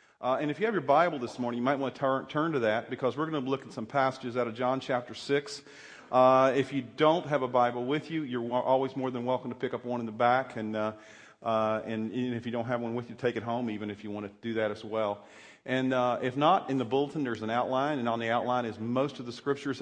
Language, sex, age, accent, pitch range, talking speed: English, male, 40-59, American, 120-155 Hz, 300 wpm